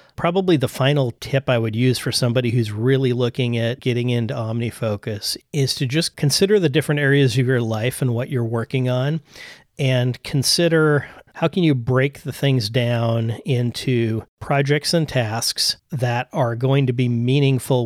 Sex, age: male, 40-59